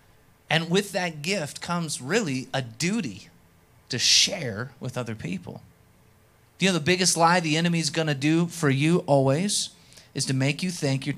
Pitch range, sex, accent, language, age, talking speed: 130-165 Hz, male, American, English, 30-49, 185 wpm